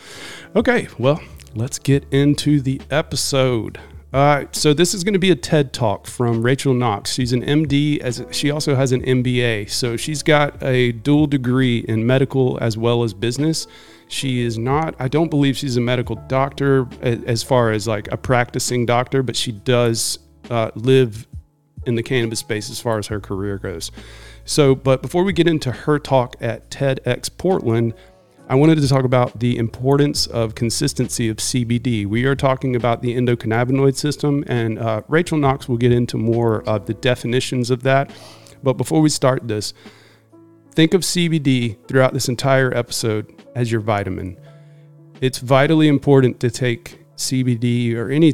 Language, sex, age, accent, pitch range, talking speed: English, male, 40-59, American, 115-140 Hz, 170 wpm